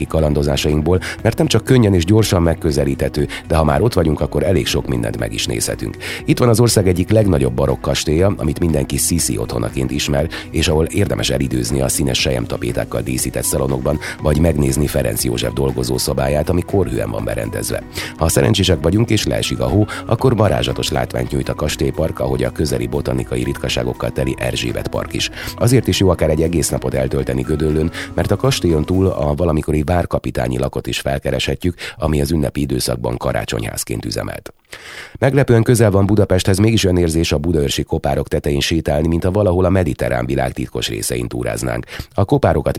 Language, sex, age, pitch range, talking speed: Hungarian, male, 30-49, 65-90 Hz, 170 wpm